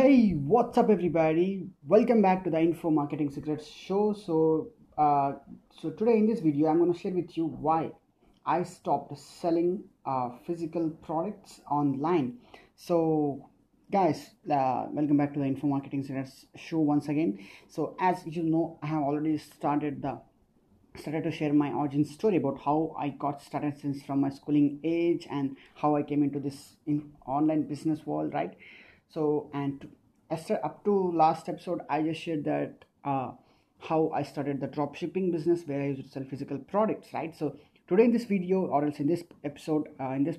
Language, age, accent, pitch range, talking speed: English, 20-39, Indian, 145-175 Hz, 175 wpm